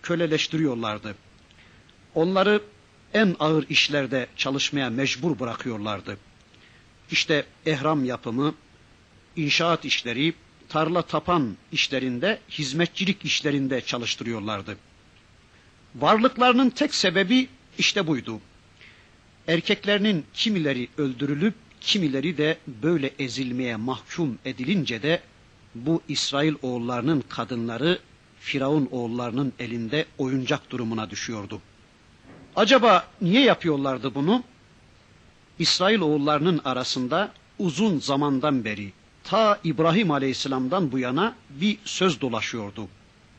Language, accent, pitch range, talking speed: Turkish, native, 115-175 Hz, 85 wpm